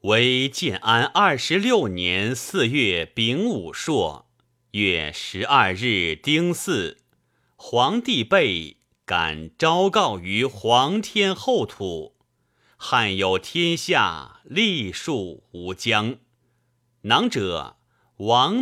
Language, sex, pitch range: Chinese, male, 105-160 Hz